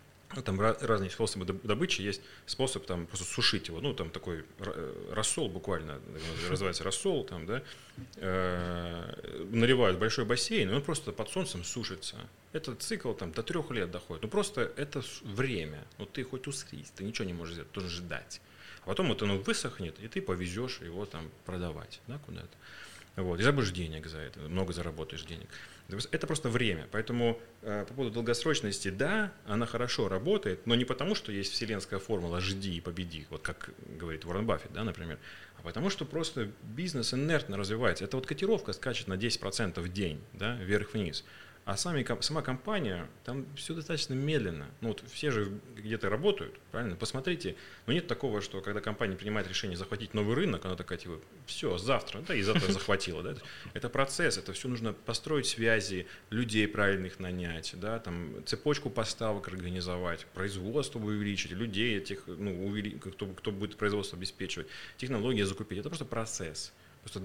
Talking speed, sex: 170 wpm, male